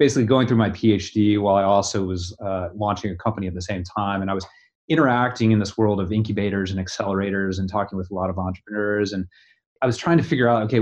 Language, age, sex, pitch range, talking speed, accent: English, 30-49, male, 95-120 Hz, 240 wpm, American